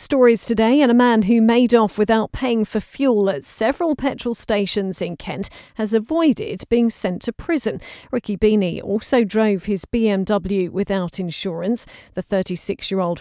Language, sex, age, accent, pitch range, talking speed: English, female, 40-59, British, 190-230 Hz, 155 wpm